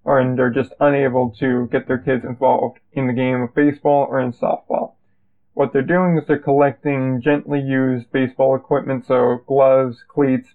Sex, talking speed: male, 170 wpm